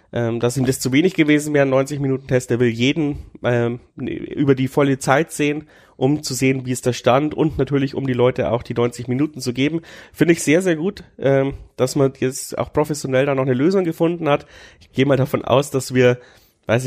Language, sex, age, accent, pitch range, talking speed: German, male, 30-49, German, 120-145 Hz, 220 wpm